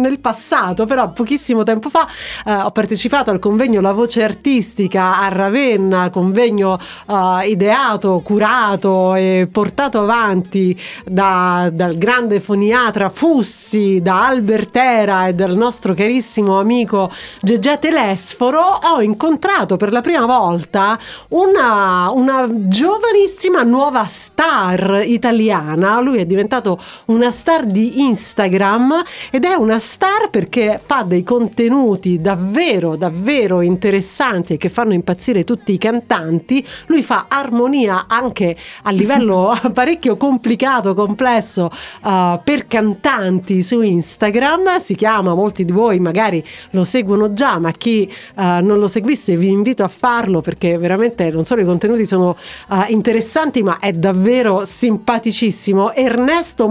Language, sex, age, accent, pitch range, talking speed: Italian, female, 40-59, native, 195-250 Hz, 130 wpm